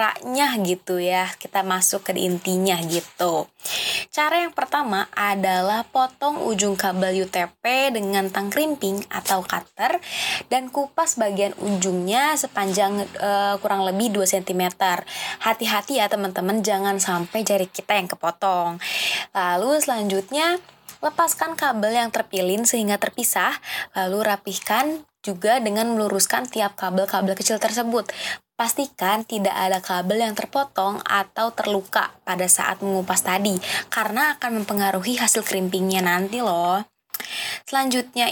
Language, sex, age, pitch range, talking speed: Indonesian, female, 20-39, 190-235 Hz, 120 wpm